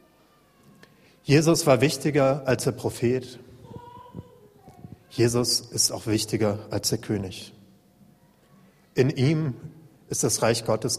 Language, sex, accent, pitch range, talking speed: German, male, German, 110-130 Hz, 105 wpm